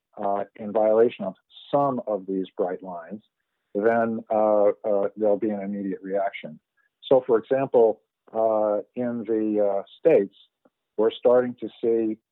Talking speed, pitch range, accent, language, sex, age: 135 wpm, 105-130 Hz, American, English, male, 50-69